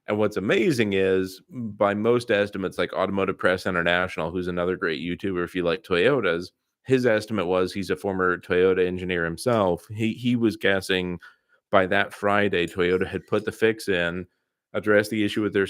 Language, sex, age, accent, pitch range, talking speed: English, male, 30-49, American, 95-120 Hz, 175 wpm